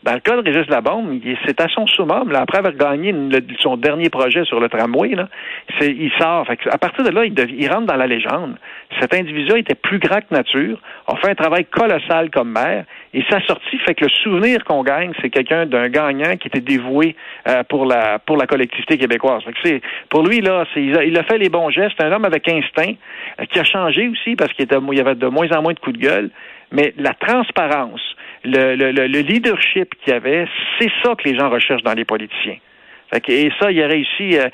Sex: male